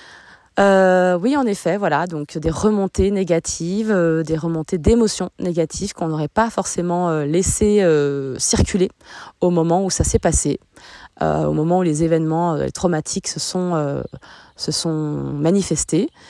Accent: French